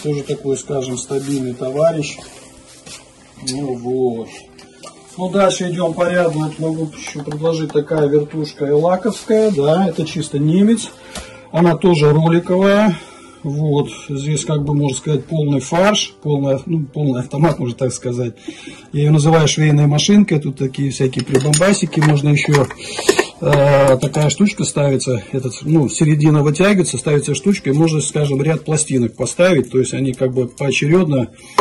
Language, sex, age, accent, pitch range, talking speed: Russian, male, 40-59, native, 135-180 Hz, 135 wpm